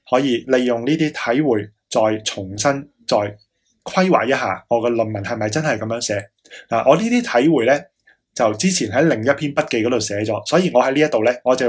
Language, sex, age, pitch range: Chinese, male, 20-39, 115-145 Hz